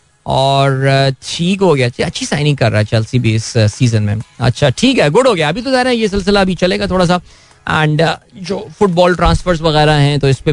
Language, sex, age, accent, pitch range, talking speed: Hindi, male, 20-39, native, 130-180 Hz, 230 wpm